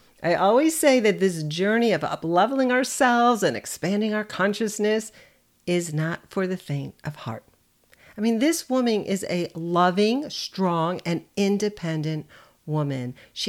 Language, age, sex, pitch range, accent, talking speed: English, 50-69, female, 165-230 Hz, American, 140 wpm